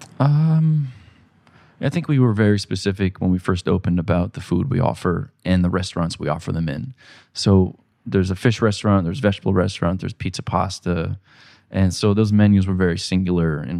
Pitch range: 95-115 Hz